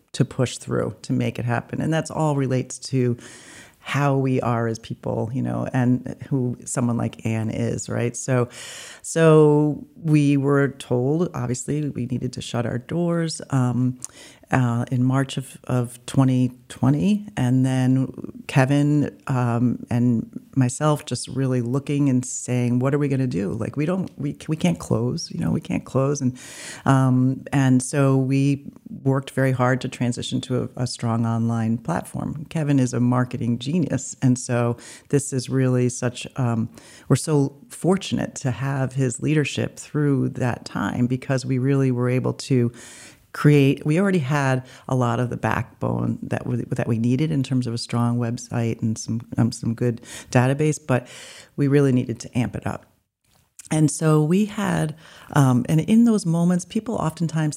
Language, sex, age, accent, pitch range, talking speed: English, female, 40-59, American, 125-145 Hz, 170 wpm